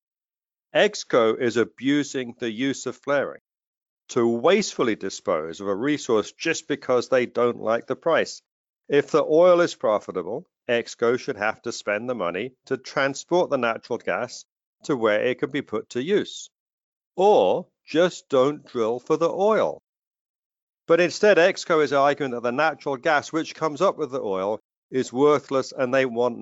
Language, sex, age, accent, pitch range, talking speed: English, male, 50-69, British, 115-150 Hz, 165 wpm